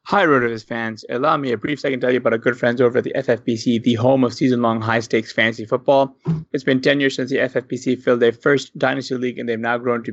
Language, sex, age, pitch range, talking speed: English, male, 20-39, 110-130 Hz, 255 wpm